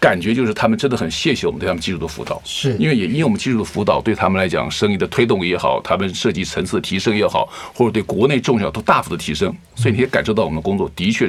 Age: 50-69